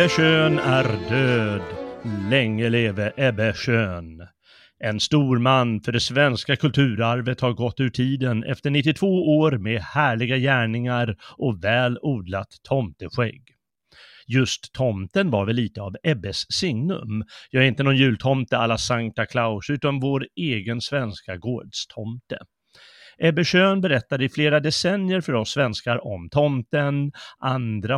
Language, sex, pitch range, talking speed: Swedish, male, 110-145 Hz, 130 wpm